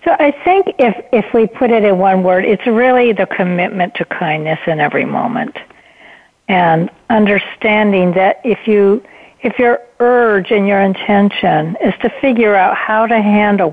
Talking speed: 165 wpm